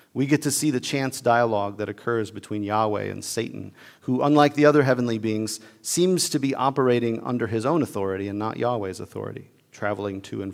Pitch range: 105-140 Hz